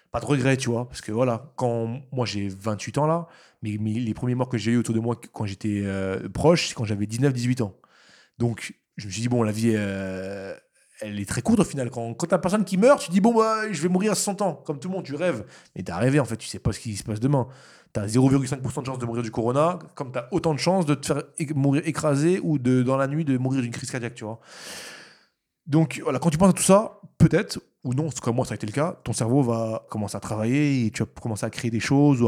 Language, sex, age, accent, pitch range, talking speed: French, male, 20-39, French, 110-150 Hz, 275 wpm